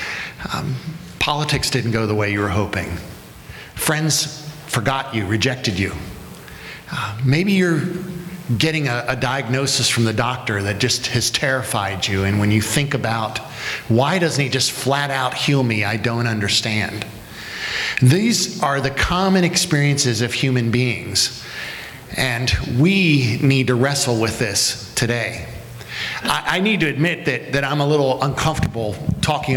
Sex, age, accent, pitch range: male, 50-69, American, 120-155 Hz